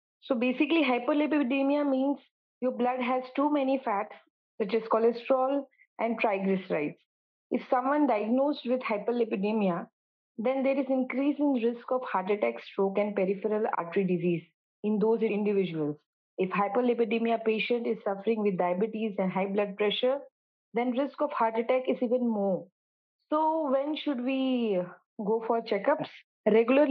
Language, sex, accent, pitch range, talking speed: English, female, Indian, 215-260 Hz, 145 wpm